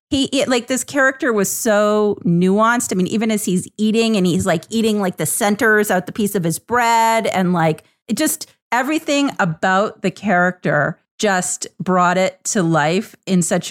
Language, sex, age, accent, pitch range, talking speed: English, female, 30-49, American, 175-230 Hz, 180 wpm